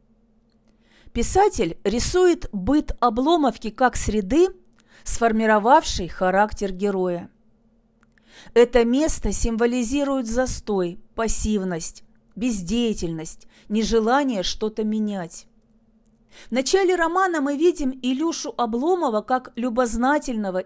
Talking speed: 80 wpm